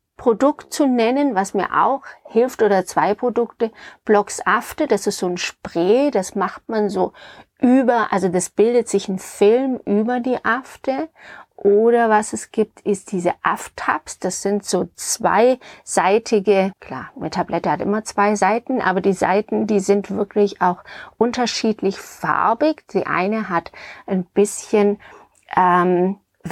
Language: German